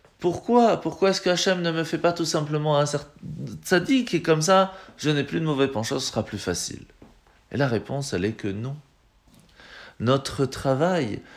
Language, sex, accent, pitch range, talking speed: French, male, French, 120-170 Hz, 180 wpm